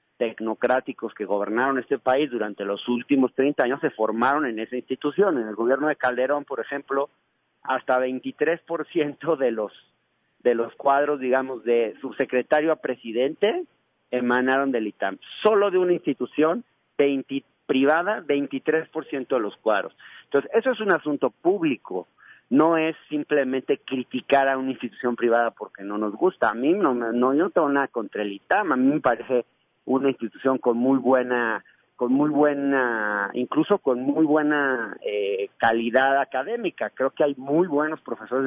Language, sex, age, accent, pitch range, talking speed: Spanish, male, 40-59, Mexican, 125-155 Hz, 155 wpm